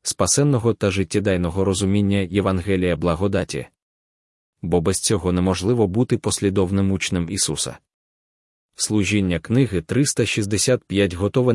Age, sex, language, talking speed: 20-39, male, Ukrainian, 95 wpm